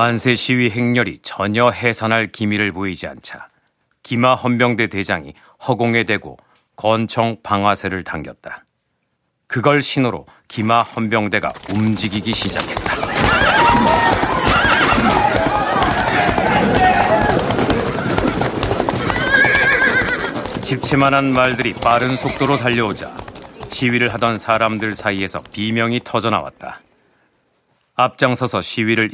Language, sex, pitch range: Korean, male, 105-125 Hz